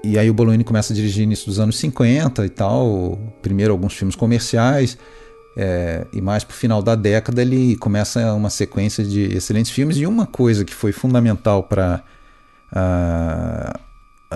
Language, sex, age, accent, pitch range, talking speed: Portuguese, male, 40-59, Brazilian, 95-125 Hz, 170 wpm